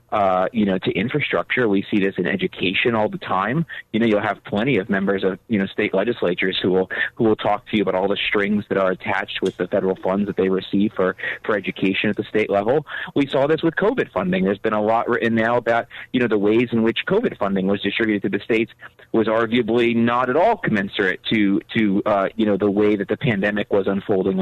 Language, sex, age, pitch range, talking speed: English, male, 30-49, 100-120 Hz, 240 wpm